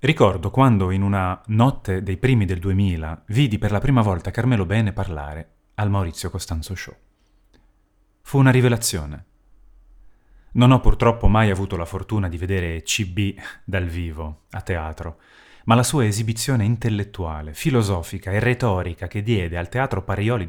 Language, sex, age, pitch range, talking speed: Italian, male, 30-49, 90-120 Hz, 150 wpm